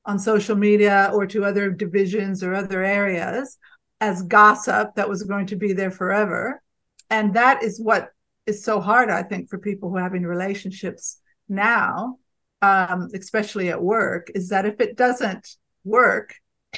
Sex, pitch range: female, 195-235 Hz